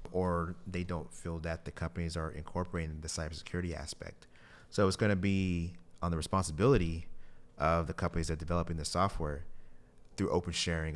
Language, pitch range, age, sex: English, 75-90 Hz, 30-49, male